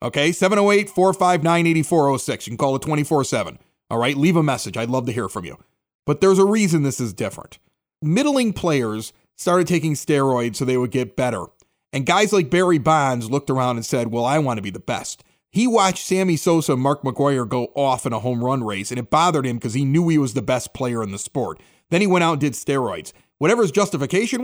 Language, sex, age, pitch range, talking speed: English, male, 30-49, 135-190 Hz, 220 wpm